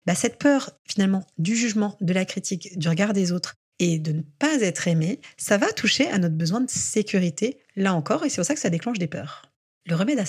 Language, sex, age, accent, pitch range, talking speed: French, female, 30-49, French, 175-245 Hz, 240 wpm